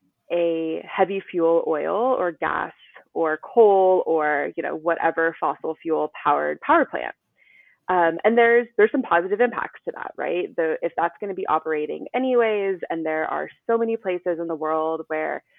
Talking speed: 175 wpm